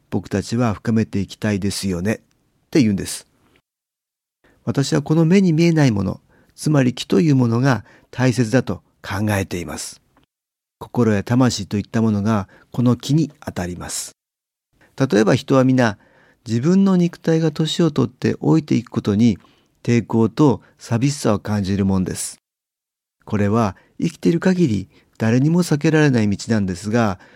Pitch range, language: 105-150 Hz, Japanese